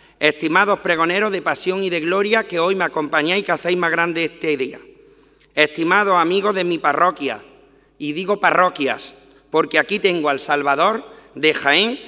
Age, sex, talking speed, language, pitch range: 40-59, male, 165 wpm, Spanish, 160-215 Hz